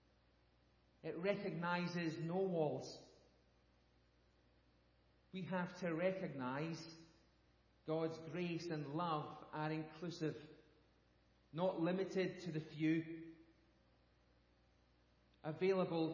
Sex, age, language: male, 40-59, English